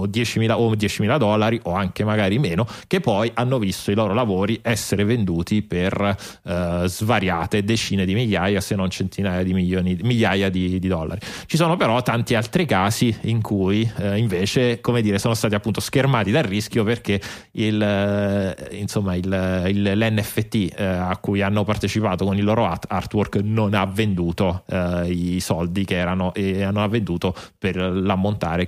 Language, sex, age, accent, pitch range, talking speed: Italian, male, 30-49, native, 95-115 Hz, 165 wpm